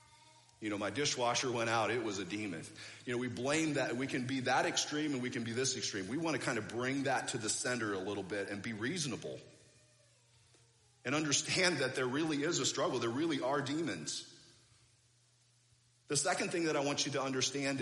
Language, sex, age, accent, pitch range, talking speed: English, male, 40-59, American, 115-135 Hz, 210 wpm